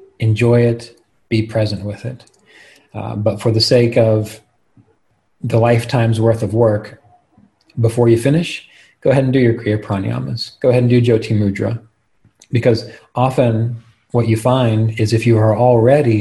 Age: 40-59